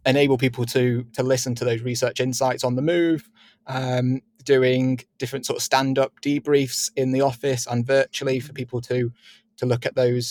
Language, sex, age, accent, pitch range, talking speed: English, male, 20-39, British, 120-135 Hz, 185 wpm